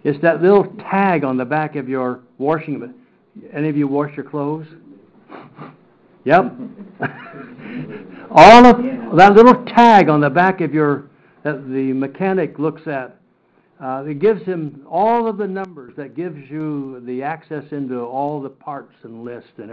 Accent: American